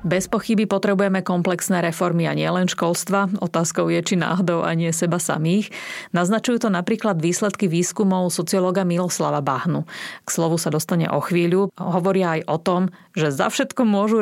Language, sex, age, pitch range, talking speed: Slovak, female, 30-49, 160-190 Hz, 160 wpm